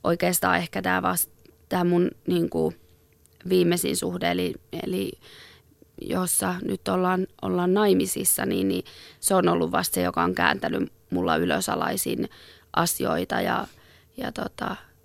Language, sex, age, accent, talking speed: Finnish, female, 20-39, native, 105 wpm